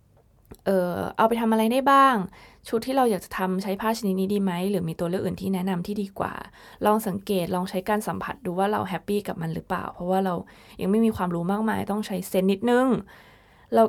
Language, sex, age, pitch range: Thai, female, 20-39, 180-215 Hz